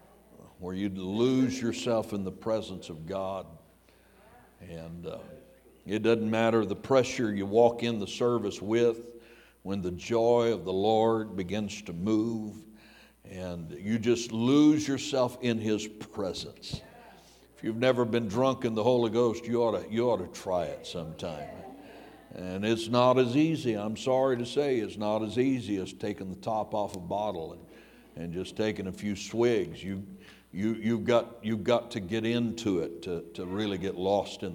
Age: 60-79